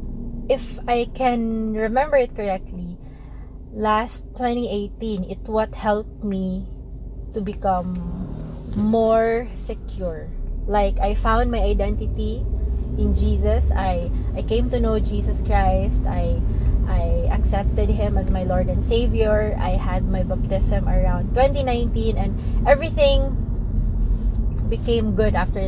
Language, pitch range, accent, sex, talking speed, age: English, 95-125 Hz, Filipino, female, 115 wpm, 20-39